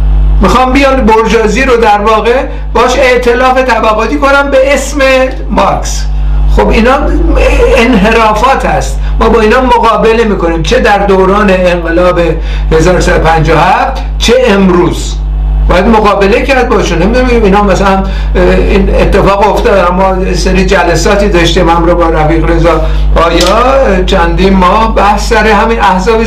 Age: 60-79